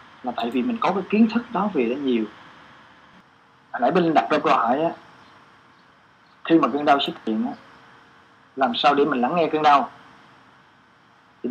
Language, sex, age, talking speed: Vietnamese, male, 20-39, 195 wpm